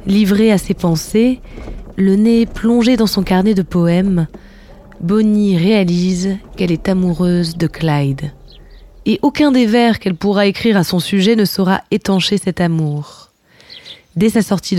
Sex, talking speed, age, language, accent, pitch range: female, 150 wpm, 20-39, French, French, 170-210 Hz